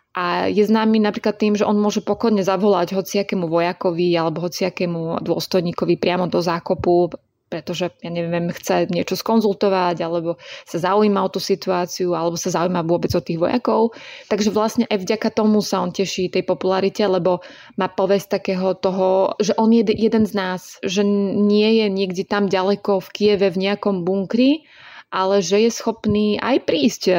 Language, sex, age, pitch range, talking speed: English, female, 20-39, 175-205 Hz, 165 wpm